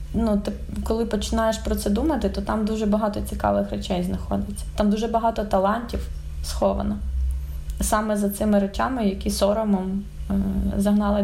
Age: 20-39